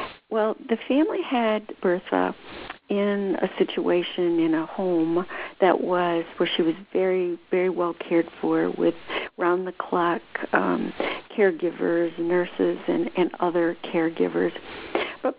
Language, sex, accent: English, female, American